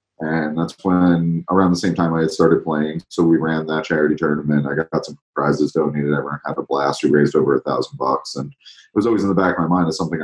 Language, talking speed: English, 260 wpm